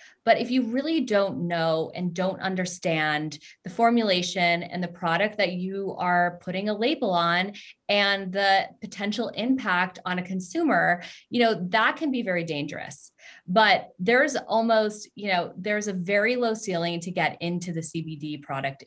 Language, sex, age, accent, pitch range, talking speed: English, female, 20-39, American, 175-225 Hz, 160 wpm